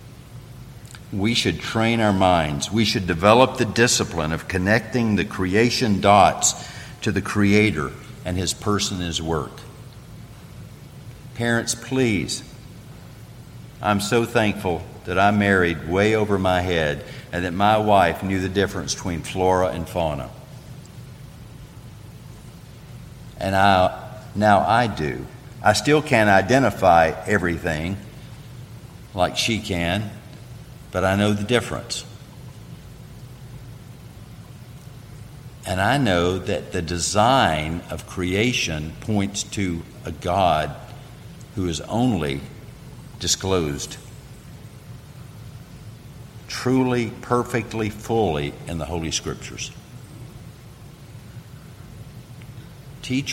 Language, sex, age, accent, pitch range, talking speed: English, male, 50-69, American, 95-125 Hz, 100 wpm